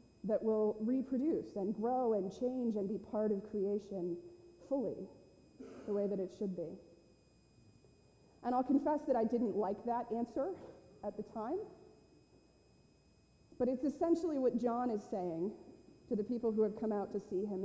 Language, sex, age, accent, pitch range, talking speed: English, female, 30-49, American, 200-235 Hz, 165 wpm